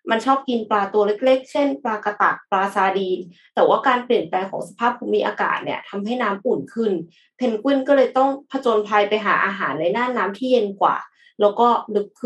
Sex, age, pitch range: female, 20-39, 200-260 Hz